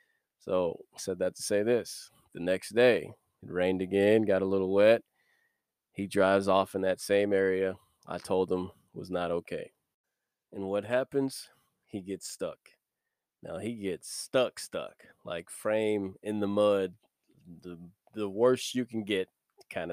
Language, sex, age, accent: English, male, 20-39, American